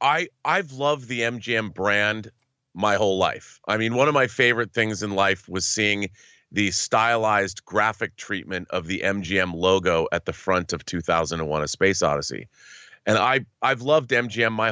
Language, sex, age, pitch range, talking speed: English, male, 30-49, 100-130 Hz, 170 wpm